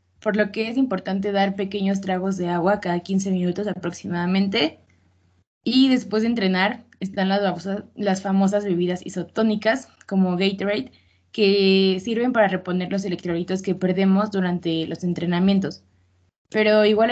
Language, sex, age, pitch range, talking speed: Spanish, female, 20-39, 180-205 Hz, 135 wpm